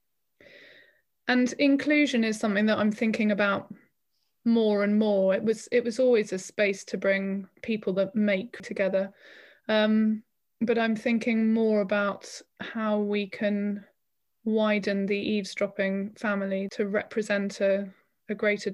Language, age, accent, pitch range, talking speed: English, 20-39, British, 195-220 Hz, 135 wpm